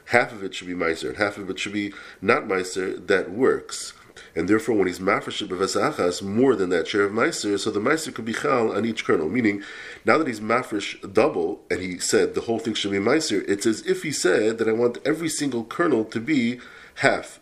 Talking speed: 225 wpm